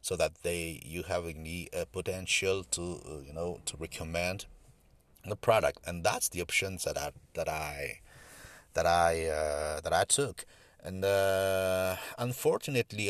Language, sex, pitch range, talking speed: English, male, 85-105 Hz, 150 wpm